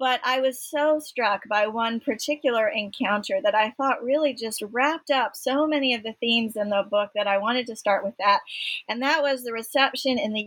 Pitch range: 200-255 Hz